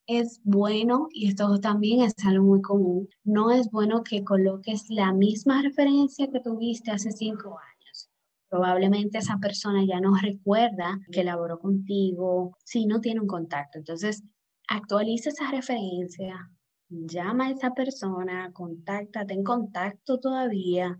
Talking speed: 135 wpm